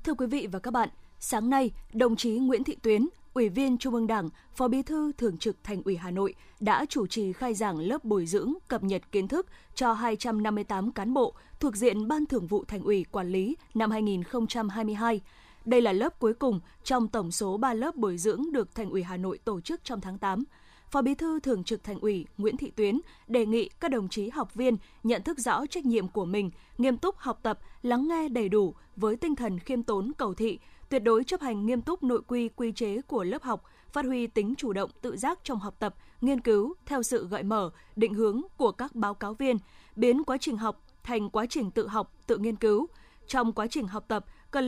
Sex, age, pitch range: female, 20-39, 210-260 Hz